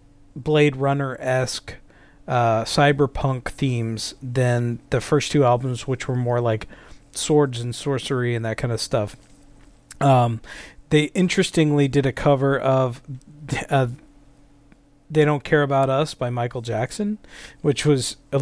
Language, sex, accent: English, male, American